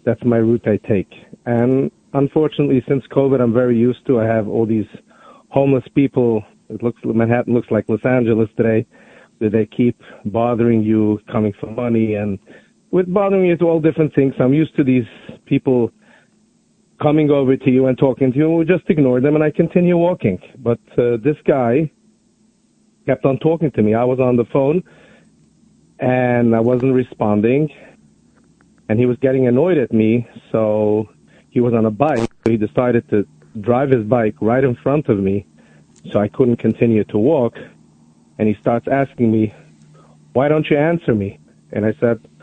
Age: 40-59